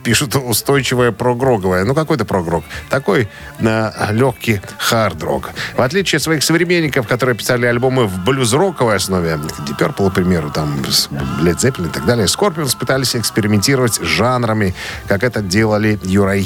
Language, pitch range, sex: Russian, 100-130 Hz, male